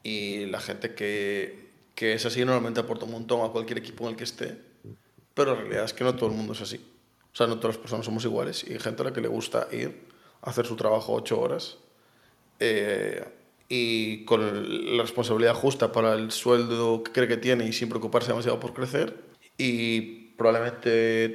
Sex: male